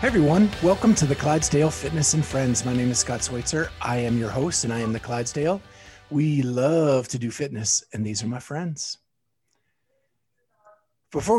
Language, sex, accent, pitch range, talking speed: English, male, American, 125-155 Hz, 180 wpm